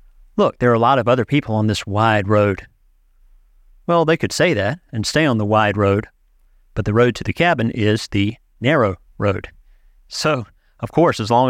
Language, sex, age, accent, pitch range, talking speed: English, male, 40-59, American, 95-120 Hz, 200 wpm